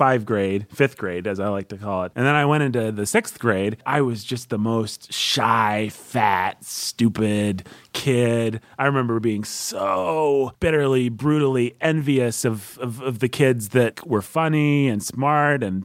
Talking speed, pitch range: 170 wpm, 110-140 Hz